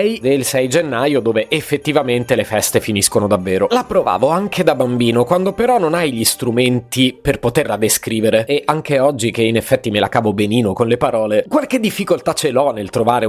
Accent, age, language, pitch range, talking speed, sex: native, 30-49, Italian, 110-160 Hz, 190 wpm, male